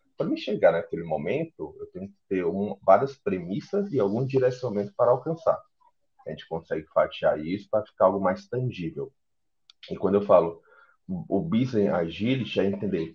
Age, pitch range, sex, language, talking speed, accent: 30-49, 100-135 Hz, male, Portuguese, 175 wpm, Brazilian